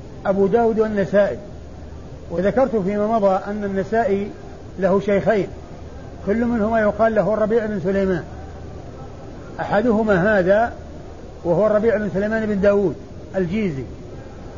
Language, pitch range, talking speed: Arabic, 175-220 Hz, 105 wpm